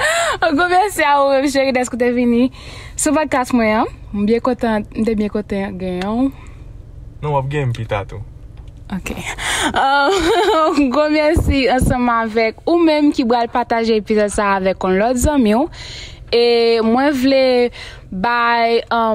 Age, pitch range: 20-39, 220-280 Hz